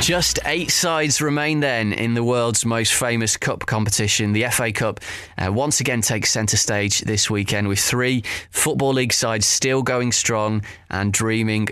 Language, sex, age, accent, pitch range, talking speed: English, male, 20-39, British, 105-135 Hz, 170 wpm